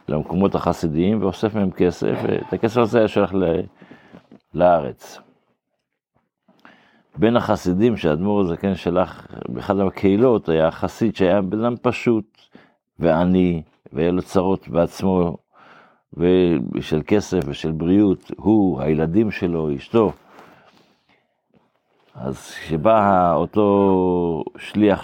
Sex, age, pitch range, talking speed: male, 60-79, 85-105 Hz, 105 wpm